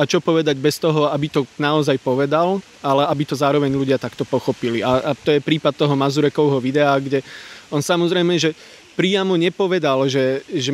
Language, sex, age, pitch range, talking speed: Slovak, male, 30-49, 135-165 Hz, 180 wpm